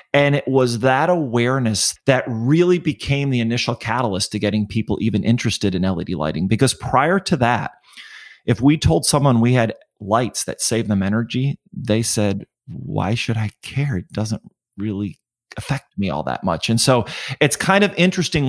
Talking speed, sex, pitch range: 175 wpm, male, 115-140 Hz